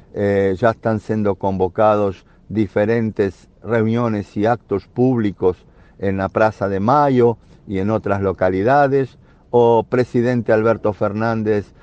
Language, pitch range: Portuguese, 100-120 Hz